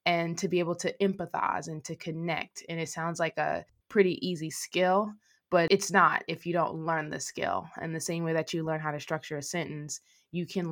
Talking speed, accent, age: 225 wpm, American, 20-39